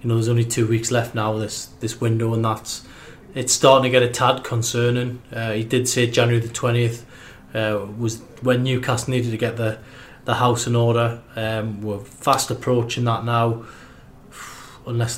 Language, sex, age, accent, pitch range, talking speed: English, male, 20-39, British, 115-130 Hz, 180 wpm